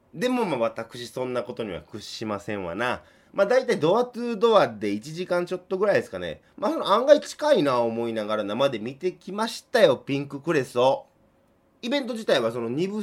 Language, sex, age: Japanese, male, 30-49